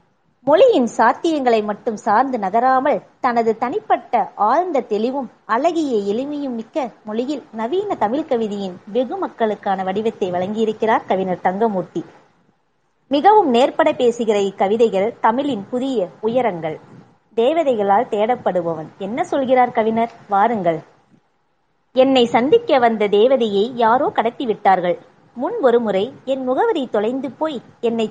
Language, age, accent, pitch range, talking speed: Tamil, 30-49, native, 205-270 Hz, 100 wpm